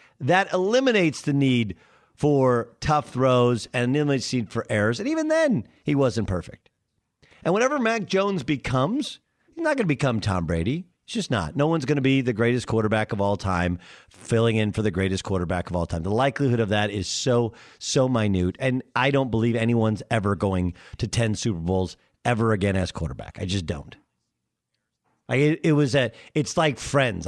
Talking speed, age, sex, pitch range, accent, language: 185 wpm, 50-69, male, 110-155 Hz, American, English